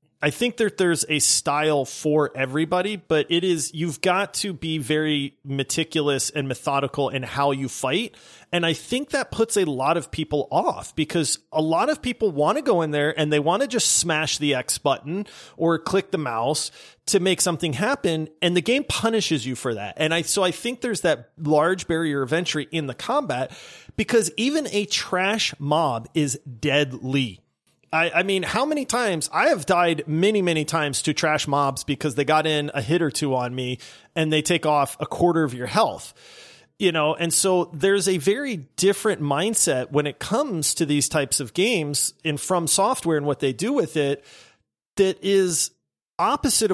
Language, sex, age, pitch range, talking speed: English, male, 30-49, 145-190 Hz, 195 wpm